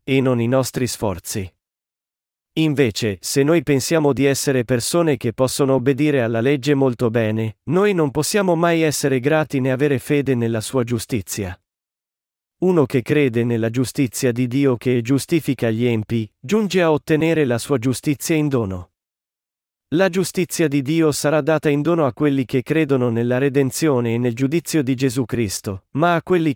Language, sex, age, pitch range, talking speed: Italian, male, 40-59, 125-155 Hz, 165 wpm